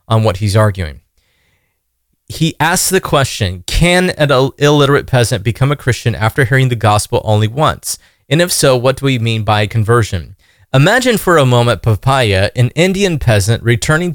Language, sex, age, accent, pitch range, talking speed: English, male, 30-49, American, 110-150 Hz, 165 wpm